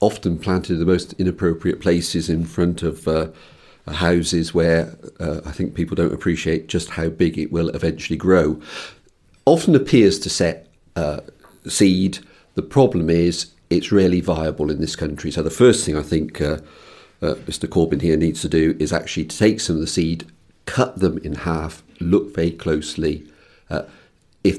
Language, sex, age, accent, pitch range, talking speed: English, male, 50-69, British, 80-95 Hz, 175 wpm